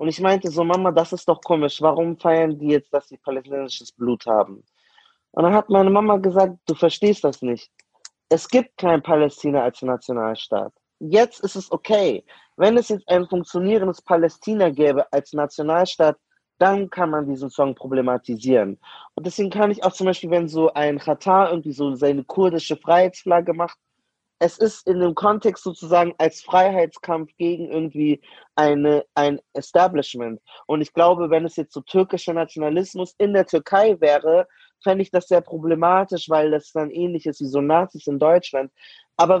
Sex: male